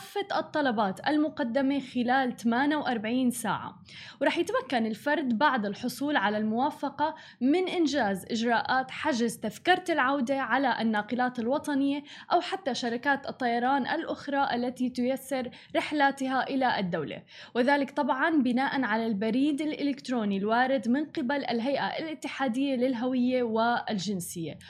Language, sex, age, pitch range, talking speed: Arabic, female, 20-39, 240-295 Hz, 105 wpm